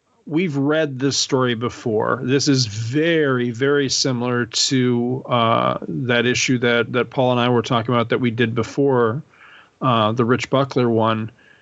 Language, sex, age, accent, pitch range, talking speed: English, male, 40-59, American, 120-150 Hz, 160 wpm